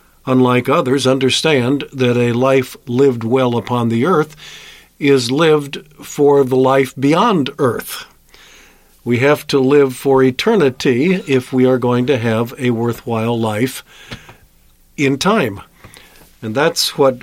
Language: English